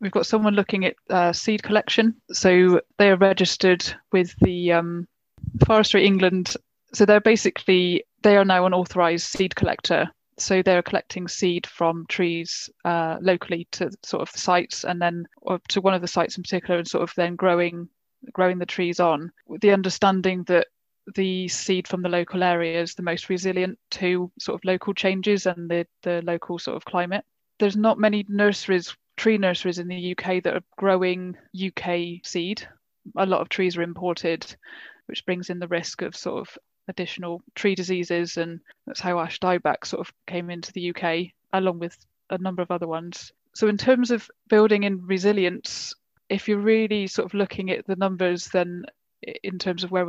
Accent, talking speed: British, 185 wpm